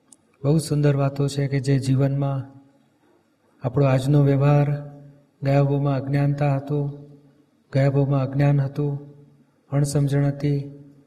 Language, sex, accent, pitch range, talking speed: Gujarati, male, native, 140-150 Hz, 100 wpm